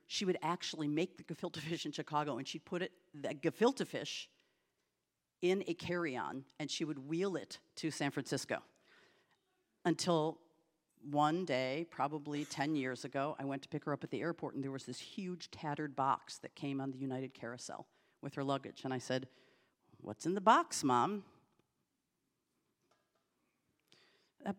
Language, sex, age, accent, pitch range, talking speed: English, female, 50-69, American, 135-165 Hz, 165 wpm